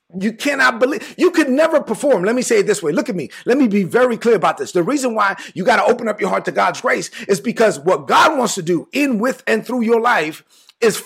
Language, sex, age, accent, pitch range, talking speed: English, male, 30-49, American, 185-250 Hz, 270 wpm